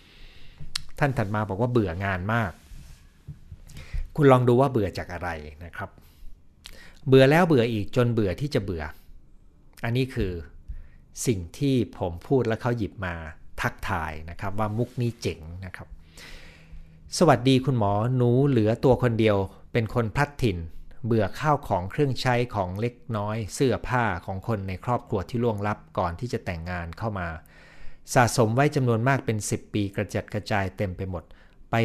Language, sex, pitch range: Thai, male, 90-120 Hz